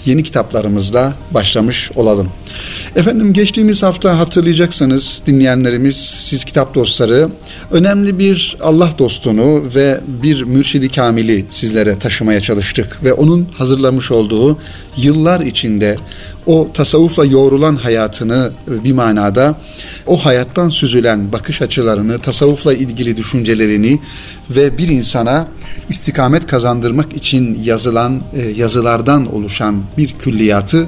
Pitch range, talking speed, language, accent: 110-145 Hz, 105 wpm, Turkish, native